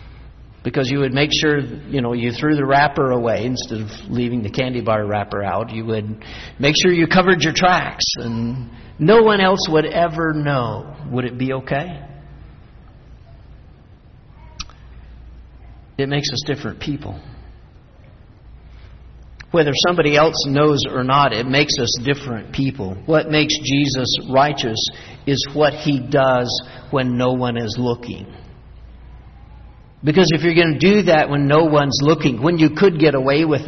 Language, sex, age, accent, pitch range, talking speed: English, male, 50-69, American, 110-145 Hz, 150 wpm